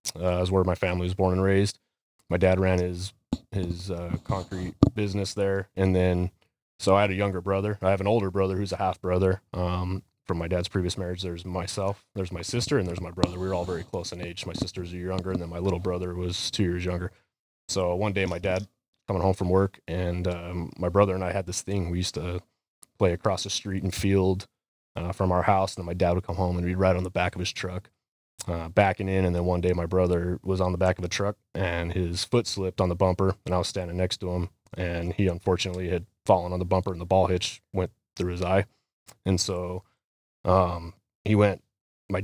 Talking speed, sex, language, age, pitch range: 240 wpm, male, English, 20-39, 90-100 Hz